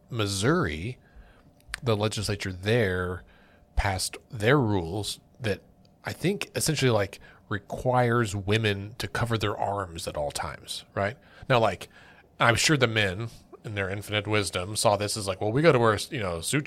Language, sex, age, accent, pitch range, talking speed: English, male, 30-49, American, 100-125 Hz, 160 wpm